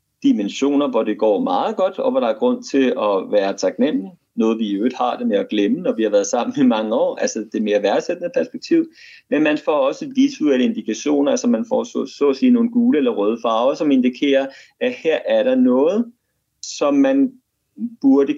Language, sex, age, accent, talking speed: Danish, male, 30-49, native, 215 wpm